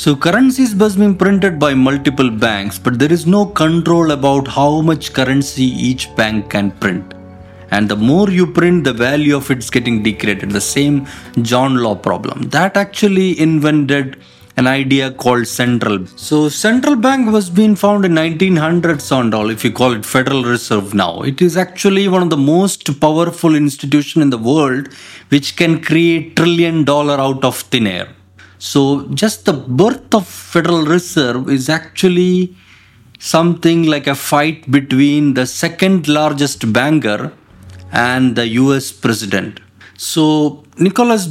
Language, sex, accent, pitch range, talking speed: English, male, Indian, 125-170 Hz, 155 wpm